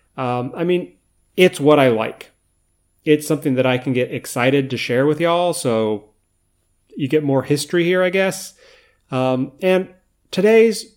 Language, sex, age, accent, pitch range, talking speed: English, male, 30-49, American, 130-180 Hz, 160 wpm